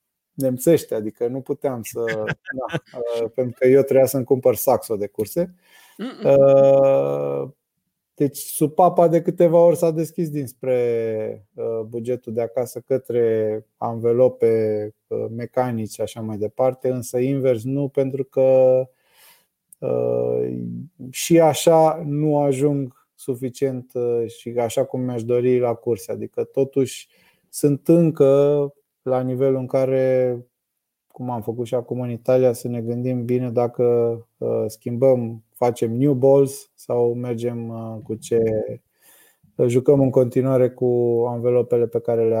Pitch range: 120-140 Hz